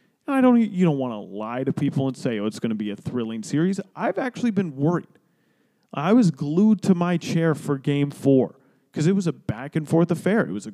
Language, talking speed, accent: English, 230 wpm, American